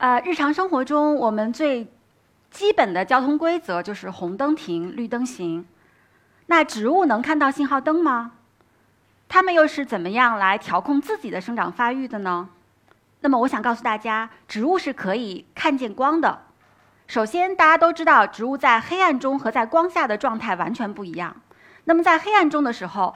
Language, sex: Chinese, female